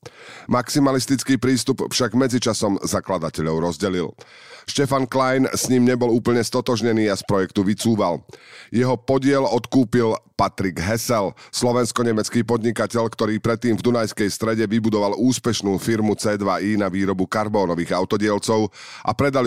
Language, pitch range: Slovak, 95-120 Hz